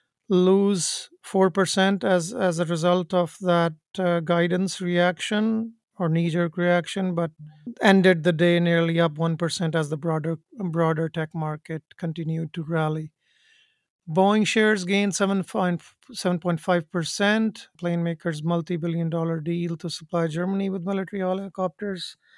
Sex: male